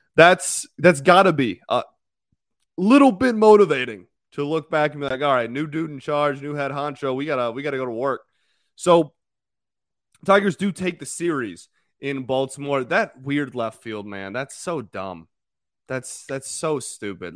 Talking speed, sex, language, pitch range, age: 175 wpm, male, English, 140-180 Hz, 20-39